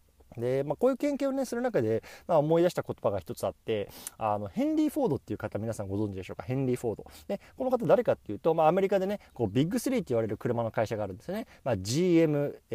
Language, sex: Japanese, male